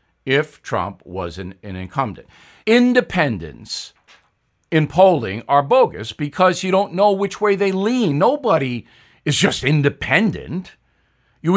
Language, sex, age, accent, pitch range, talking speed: English, male, 60-79, American, 130-195 Hz, 125 wpm